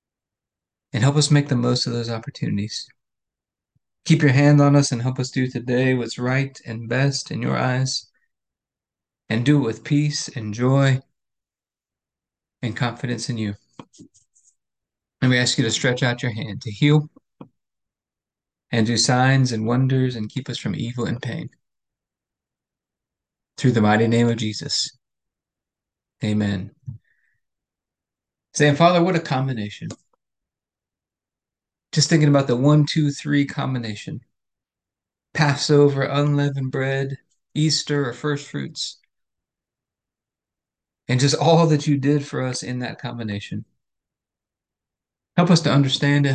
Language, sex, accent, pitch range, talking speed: English, male, American, 120-145 Hz, 135 wpm